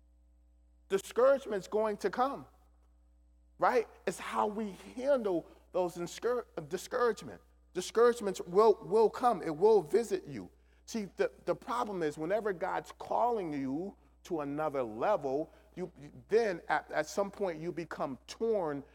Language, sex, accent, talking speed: English, male, American, 135 wpm